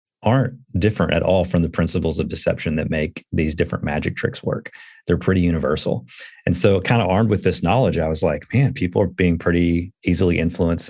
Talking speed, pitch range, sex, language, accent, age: 205 wpm, 80-110 Hz, male, English, American, 40-59